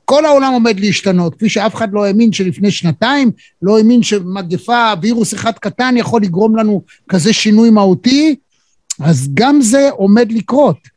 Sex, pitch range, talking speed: male, 175-220 Hz, 155 wpm